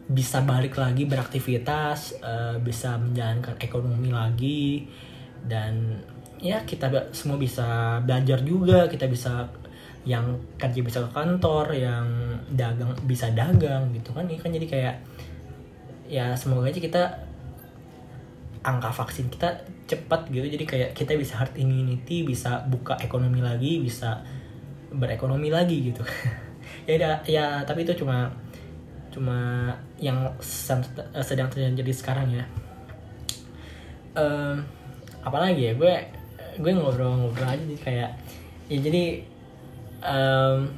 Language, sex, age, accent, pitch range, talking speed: Indonesian, male, 20-39, native, 120-140 Hz, 115 wpm